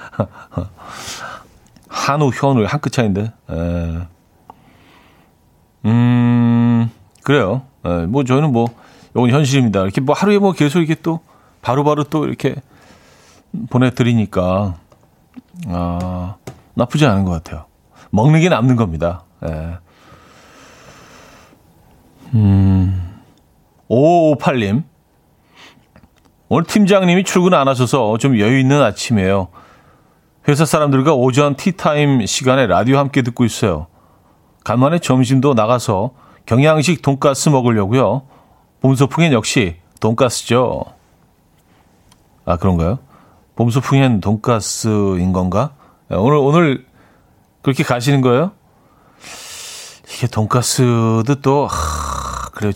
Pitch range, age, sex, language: 100-140 Hz, 40-59, male, Korean